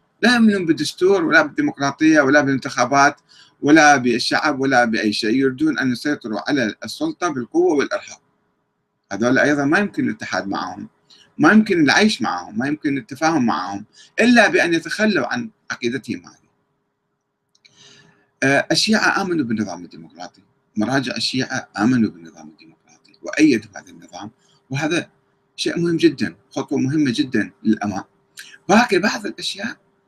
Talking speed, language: 120 wpm, Arabic